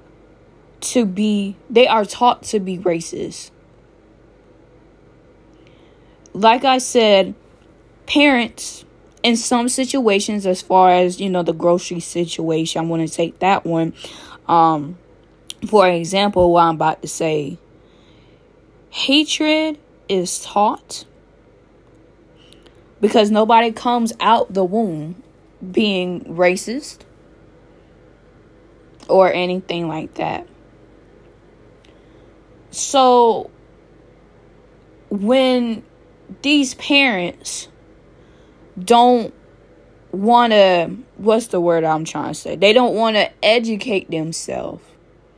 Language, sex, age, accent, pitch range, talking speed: English, female, 10-29, American, 175-235 Hz, 95 wpm